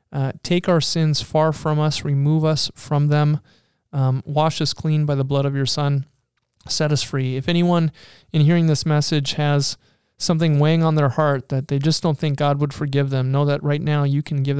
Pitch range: 135-150 Hz